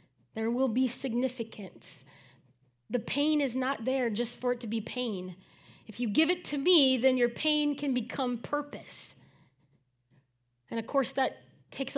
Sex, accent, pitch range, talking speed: female, American, 175-255 Hz, 160 wpm